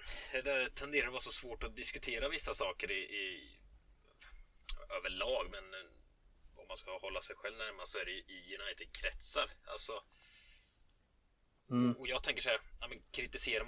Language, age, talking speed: Swedish, 20-39, 155 wpm